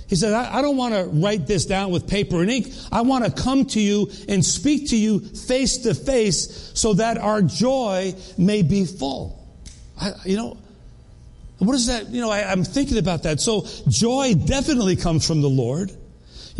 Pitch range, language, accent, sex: 175-230 Hz, English, American, male